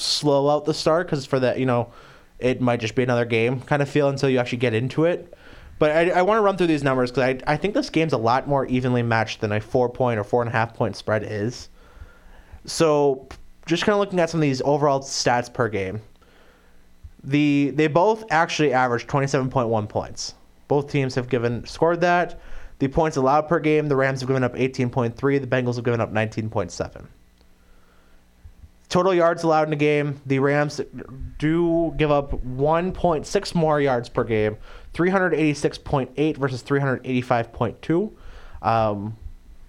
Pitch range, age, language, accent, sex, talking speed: 115-150 Hz, 20-39, English, American, male, 180 wpm